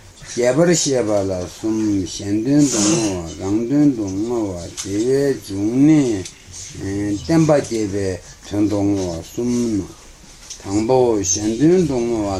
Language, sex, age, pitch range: Italian, male, 60-79, 95-125 Hz